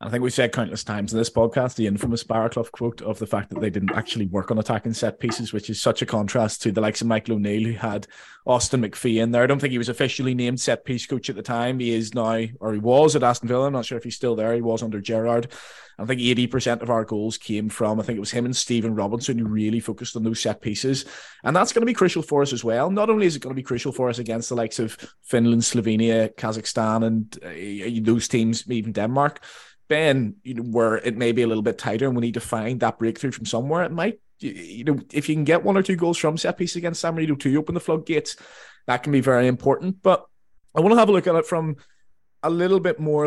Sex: male